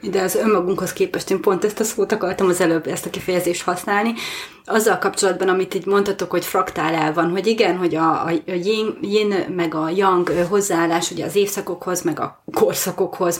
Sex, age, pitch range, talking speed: female, 30-49, 180-215 Hz, 185 wpm